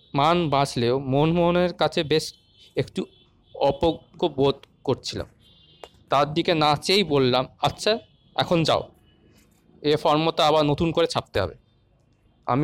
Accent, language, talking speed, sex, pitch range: native, Bengali, 115 wpm, male, 115-170 Hz